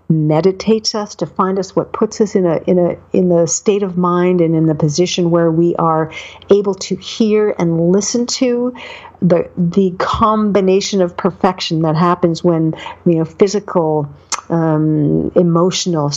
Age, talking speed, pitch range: 50-69, 160 wpm, 170-215 Hz